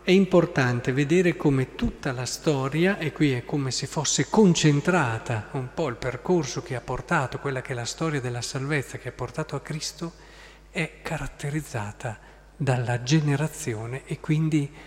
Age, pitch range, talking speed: 50-69, 130-170 Hz, 155 wpm